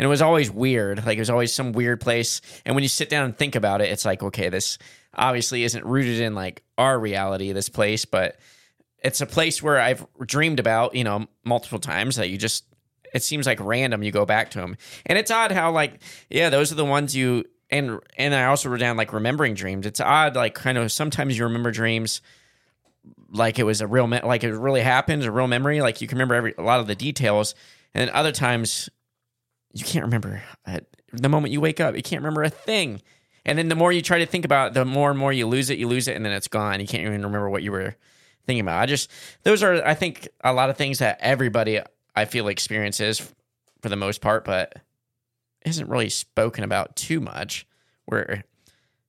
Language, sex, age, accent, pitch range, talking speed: English, male, 20-39, American, 110-140 Hz, 235 wpm